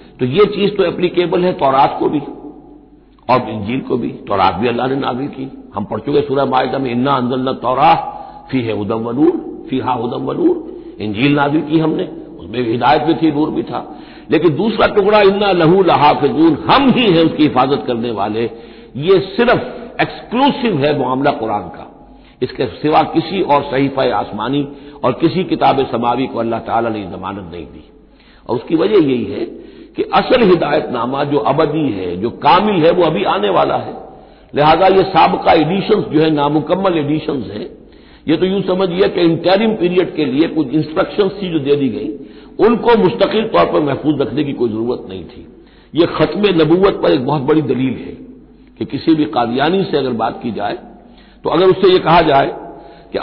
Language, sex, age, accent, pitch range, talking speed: Hindi, male, 60-79, native, 130-190 Hz, 185 wpm